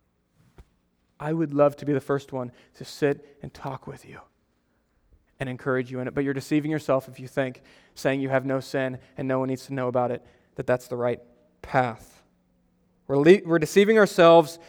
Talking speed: 200 wpm